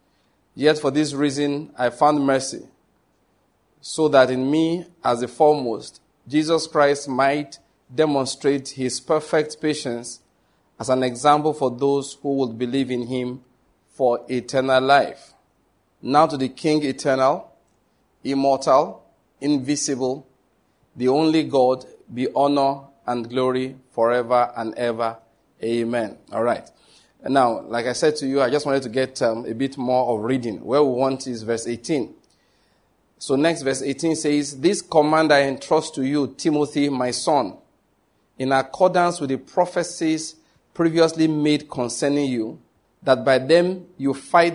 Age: 40-59